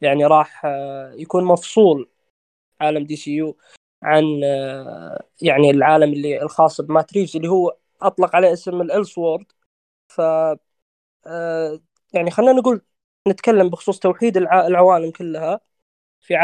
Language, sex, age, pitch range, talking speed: Arabic, female, 20-39, 160-200 Hz, 110 wpm